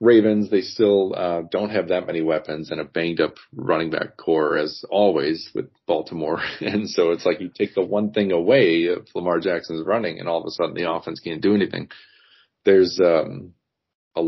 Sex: male